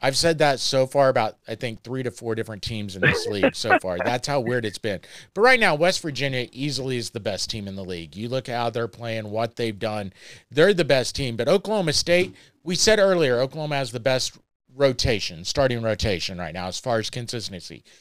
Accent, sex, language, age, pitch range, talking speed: American, male, English, 40-59, 115-160 Hz, 225 wpm